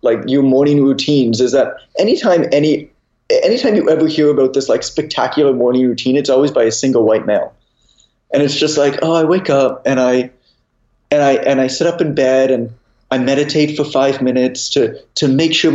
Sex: male